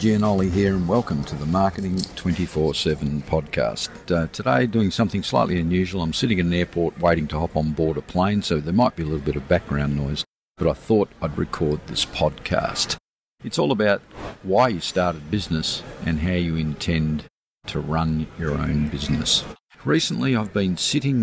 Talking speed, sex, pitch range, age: 180 wpm, male, 80-100 Hz, 50-69